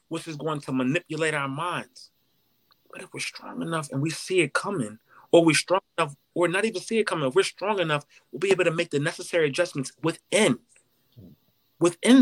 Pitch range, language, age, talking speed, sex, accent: 160-225 Hz, English, 30-49, 200 wpm, male, American